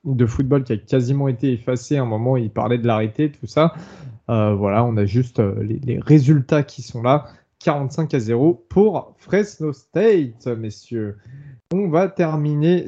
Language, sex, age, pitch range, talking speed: French, male, 20-39, 115-145 Hz, 175 wpm